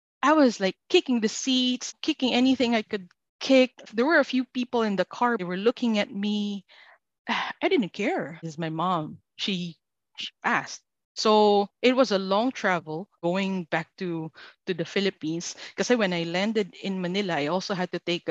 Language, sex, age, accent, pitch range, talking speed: English, female, 20-39, Filipino, 170-215 Hz, 185 wpm